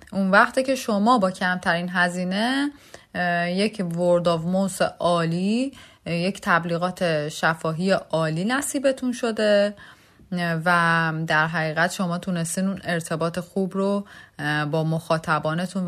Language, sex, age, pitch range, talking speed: Persian, female, 30-49, 160-205 Hz, 105 wpm